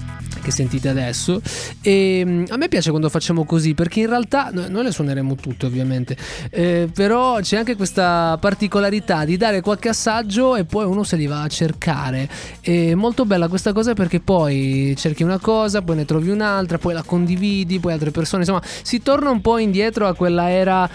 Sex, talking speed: male, 190 wpm